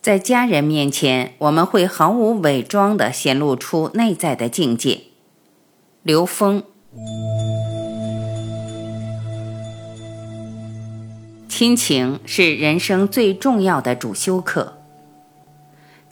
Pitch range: 130-200 Hz